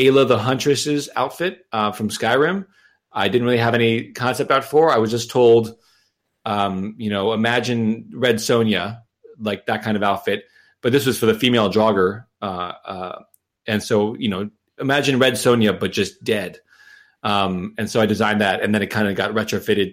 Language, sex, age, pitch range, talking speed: English, male, 30-49, 105-135 Hz, 190 wpm